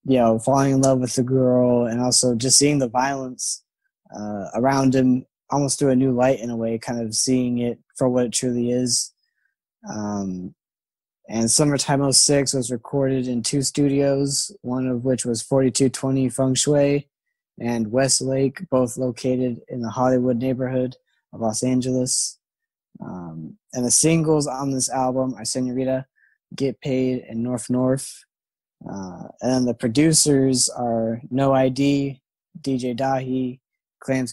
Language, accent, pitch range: English, American, 125-140 Hz